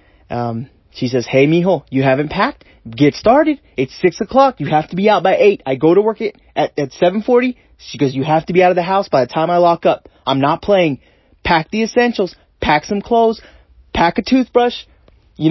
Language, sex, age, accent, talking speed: English, male, 30-49, American, 220 wpm